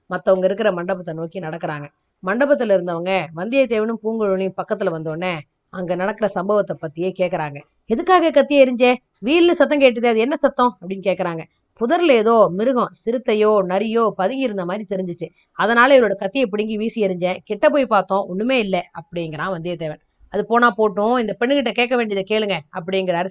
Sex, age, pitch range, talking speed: female, 20-39, 190-260 Hz, 150 wpm